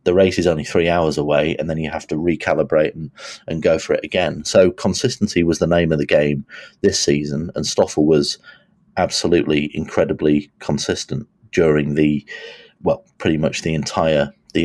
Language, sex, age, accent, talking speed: English, male, 30-49, British, 175 wpm